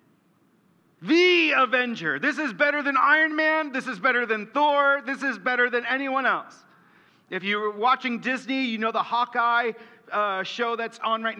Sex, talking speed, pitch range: male, 170 wpm, 200-280 Hz